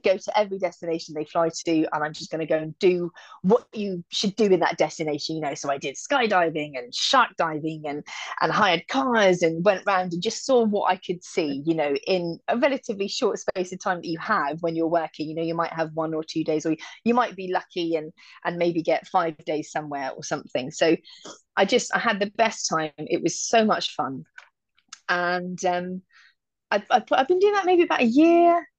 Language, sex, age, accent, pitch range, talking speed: English, female, 30-49, British, 160-220 Hz, 225 wpm